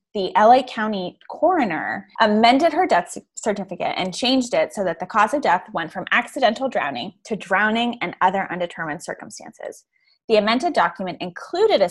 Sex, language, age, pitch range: female, English, 10-29, 180-250 Hz